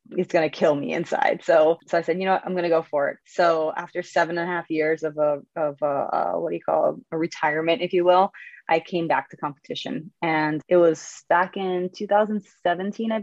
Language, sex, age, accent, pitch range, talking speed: English, female, 20-39, American, 160-185 Hz, 235 wpm